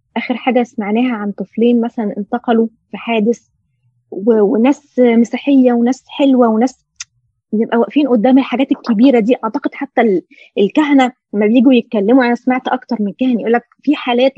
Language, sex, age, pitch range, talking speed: Arabic, female, 20-39, 220-275 Hz, 150 wpm